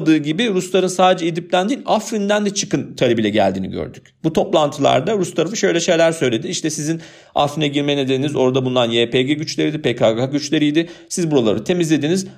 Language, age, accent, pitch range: Turkish, 40-59, native, 125-170 Hz